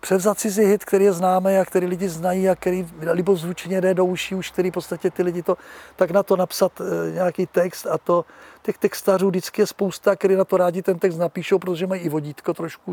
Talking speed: 225 wpm